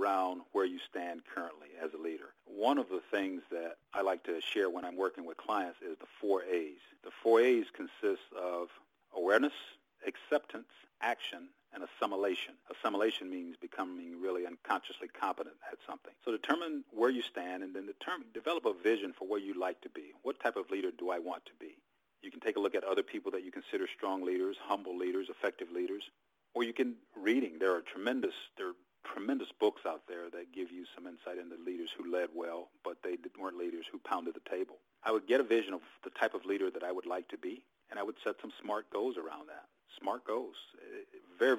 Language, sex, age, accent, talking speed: English, male, 50-69, American, 210 wpm